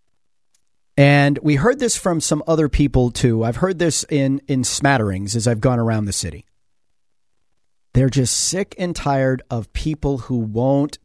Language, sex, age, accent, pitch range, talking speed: English, male, 40-59, American, 115-140 Hz, 165 wpm